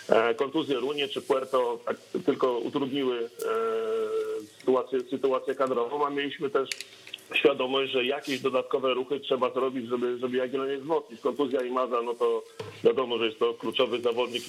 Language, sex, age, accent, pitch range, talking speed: Polish, male, 40-59, native, 130-150 Hz, 150 wpm